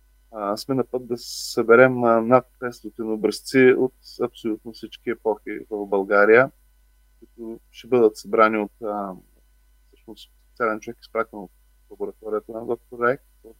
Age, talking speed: 20-39, 130 wpm